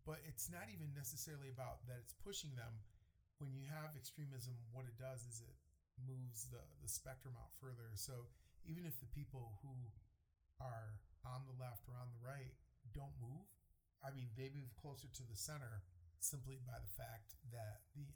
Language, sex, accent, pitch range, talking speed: English, male, American, 110-135 Hz, 180 wpm